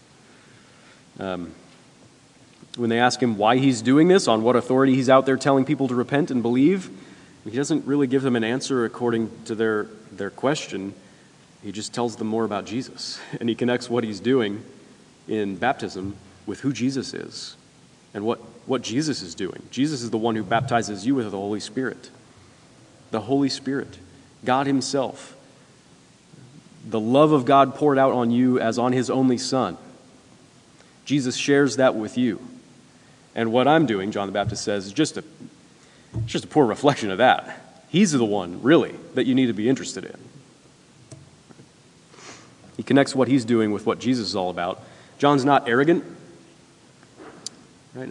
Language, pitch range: English, 110-135 Hz